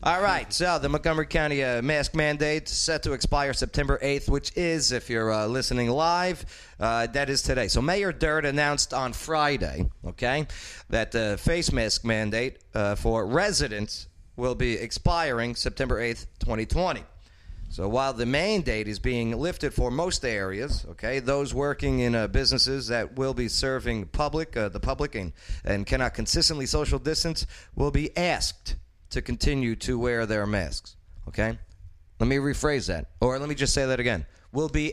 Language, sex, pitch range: English, male, 100-145 Hz